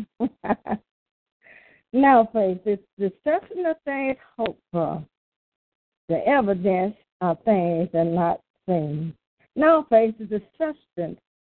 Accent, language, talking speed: American, English, 105 wpm